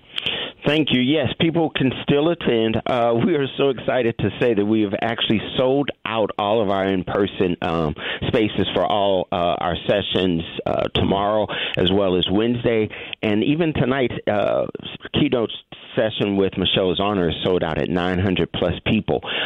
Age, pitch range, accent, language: 50-69, 95-125 Hz, American, English